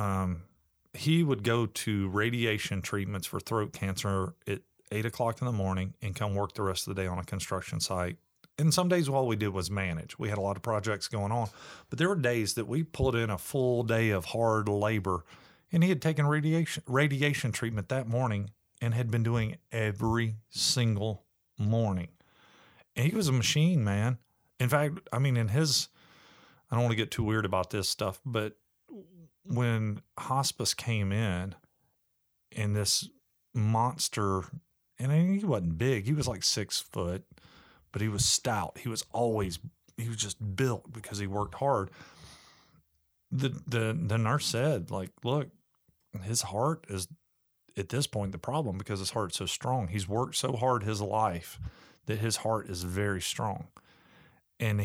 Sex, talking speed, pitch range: male, 175 wpm, 100-130 Hz